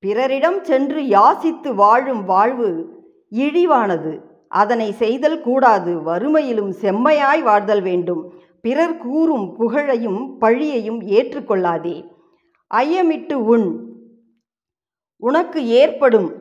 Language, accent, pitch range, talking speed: Tamil, native, 210-290 Hz, 85 wpm